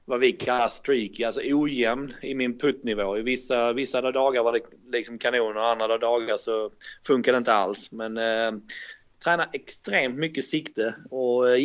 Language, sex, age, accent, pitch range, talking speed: English, male, 30-49, Swedish, 110-135 Hz, 170 wpm